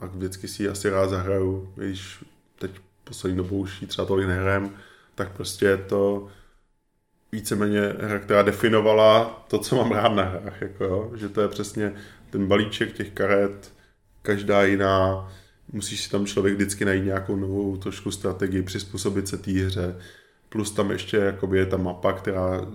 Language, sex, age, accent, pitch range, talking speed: Czech, male, 20-39, native, 95-105 Hz, 170 wpm